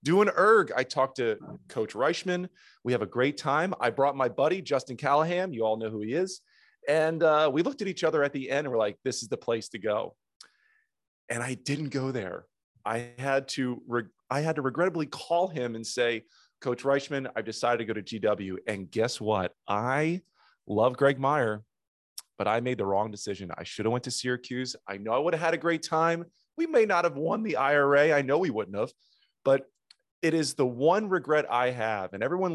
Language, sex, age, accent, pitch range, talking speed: English, male, 30-49, American, 110-155 Hz, 220 wpm